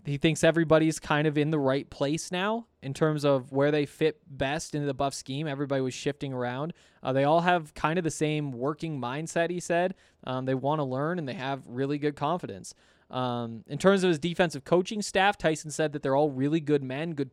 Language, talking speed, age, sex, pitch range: English, 225 wpm, 20-39, male, 130-160 Hz